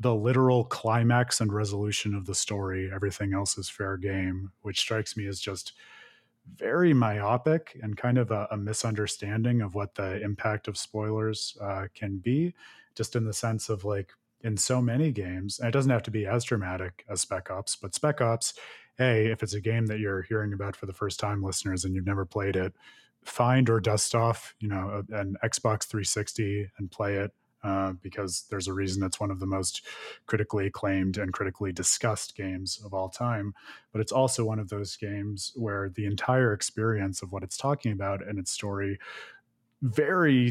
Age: 30-49